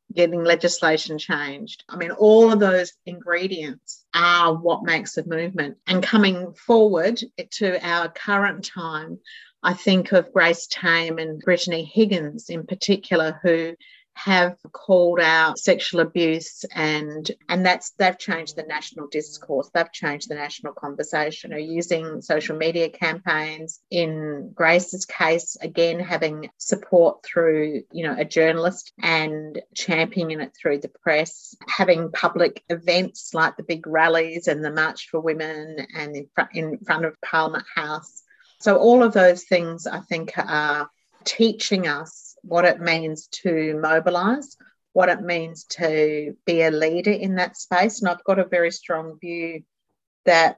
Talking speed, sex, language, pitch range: 150 wpm, female, English, 160-185 Hz